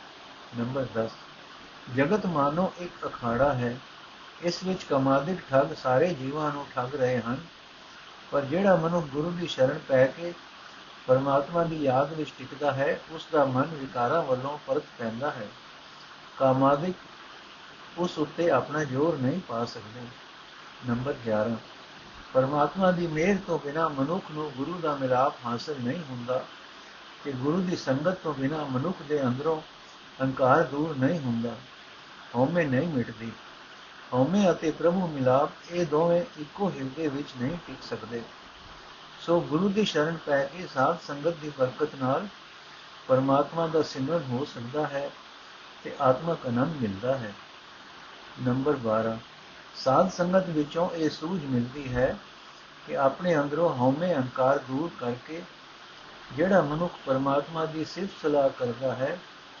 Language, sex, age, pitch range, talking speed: Punjabi, male, 60-79, 130-165 Hz, 135 wpm